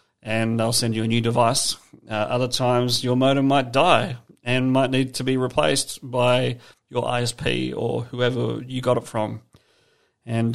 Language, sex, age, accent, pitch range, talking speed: English, male, 40-59, Australian, 115-130 Hz, 170 wpm